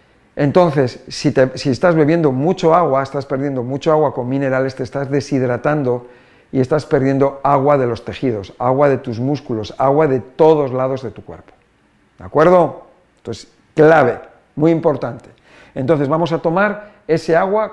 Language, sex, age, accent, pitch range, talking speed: Spanish, male, 50-69, Spanish, 135-185 Hz, 155 wpm